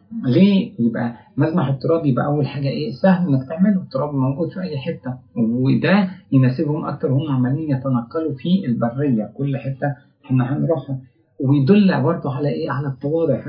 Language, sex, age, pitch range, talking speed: English, male, 50-69, 125-150 Hz, 150 wpm